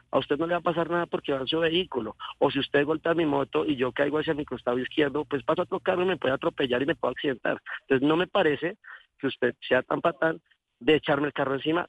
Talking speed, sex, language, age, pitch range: 255 wpm, male, Spanish, 40-59, 130-165 Hz